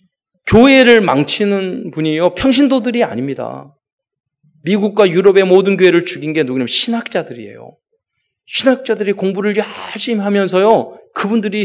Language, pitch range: Korean, 165-245 Hz